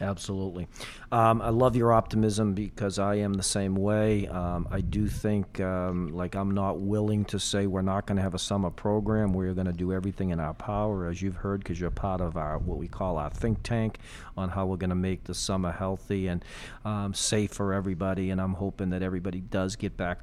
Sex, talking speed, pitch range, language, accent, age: male, 220 wpm, 90-110 Hz, English, American, 40-59